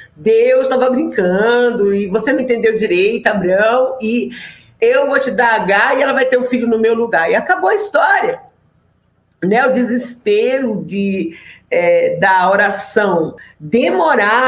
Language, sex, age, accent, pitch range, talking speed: Portuguese, female, 50-69, Brazilian, 215-310 Hz, 155 wpm